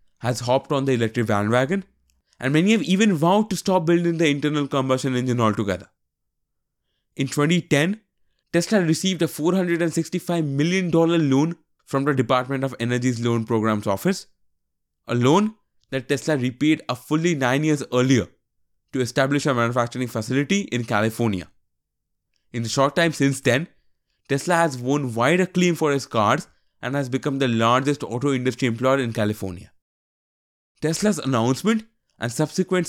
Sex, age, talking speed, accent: male, 20-39, 150 wpm, Indian